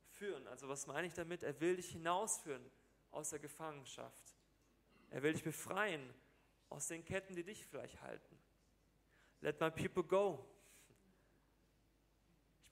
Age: 30-49